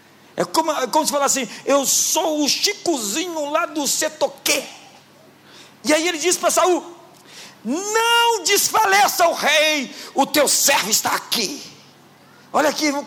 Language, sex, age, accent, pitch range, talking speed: Portuguese, male, 50-69, Brazilian, 225-310 Hz, 140 wpm